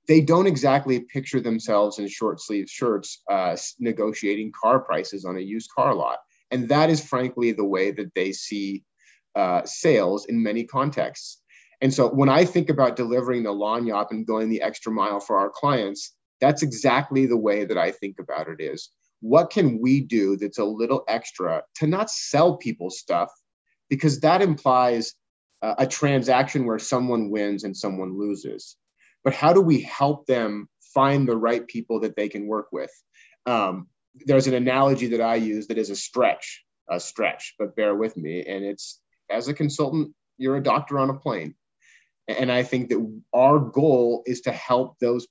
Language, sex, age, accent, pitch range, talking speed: English, male, 30-49, American, 110-140 Hz, 180 wpm